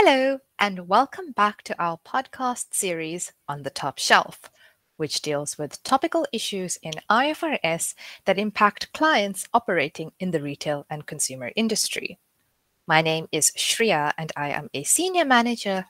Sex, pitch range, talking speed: female, 160-265 Hz, 145 wpm